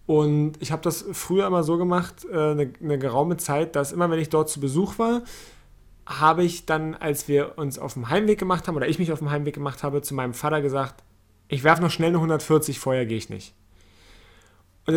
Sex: male